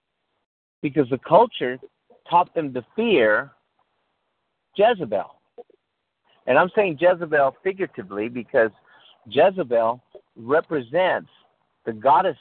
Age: 50-69